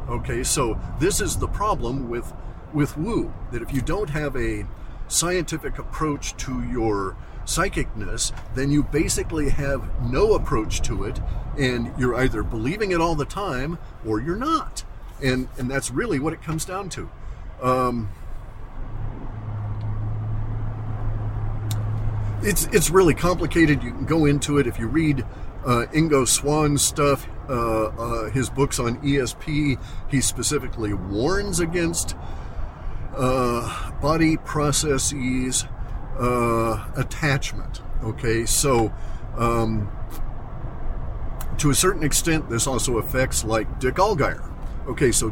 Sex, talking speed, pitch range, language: male, 125 wpm, 110-140 Hz, English